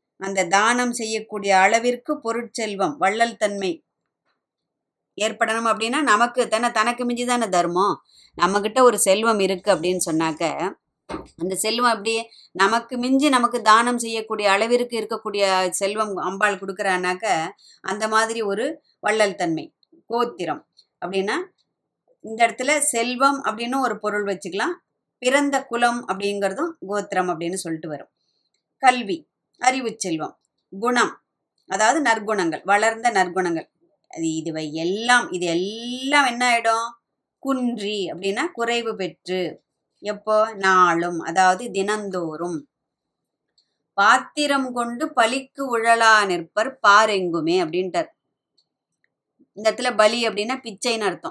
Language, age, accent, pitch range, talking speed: Tamil, 20-39, native, 190-245 Hz, 100 wpm